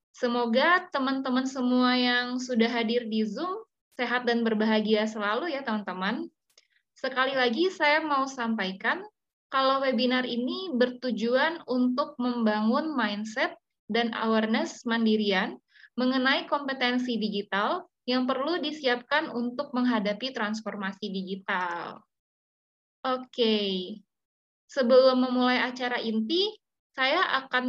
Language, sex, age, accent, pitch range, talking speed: Indonesian, female, 20-39, native, 220-265 Hz, 100 wpm